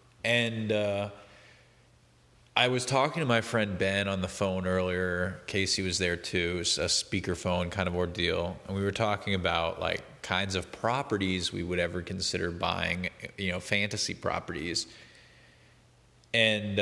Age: 30-49